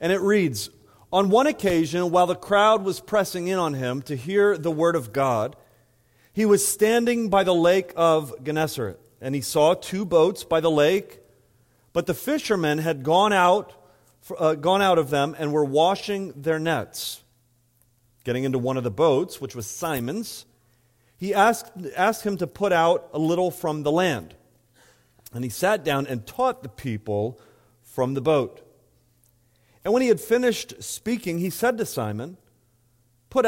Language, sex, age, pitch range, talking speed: English, male, 40-59, 120-185 Hz, 170 wpm